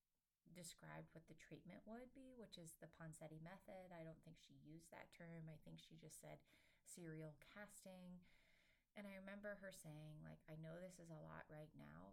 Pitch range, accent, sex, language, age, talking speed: 140-175 Hz, American, female, English, 30-49, 195 wpm